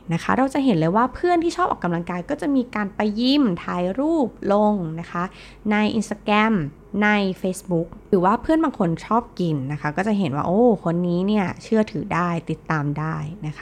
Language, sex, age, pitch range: Thai, female, 20-39, 165-220 Hz